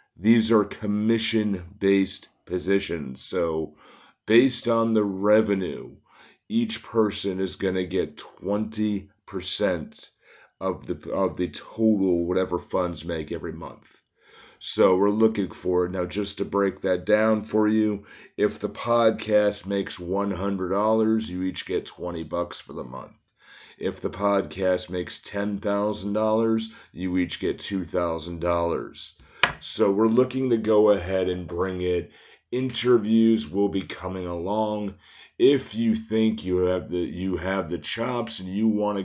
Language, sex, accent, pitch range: English, male, American, 90-110 Hz